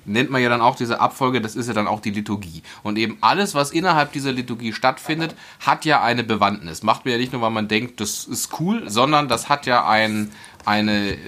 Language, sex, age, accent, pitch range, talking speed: German, male, 30-49, German, 110-145 Hz, 230 wpm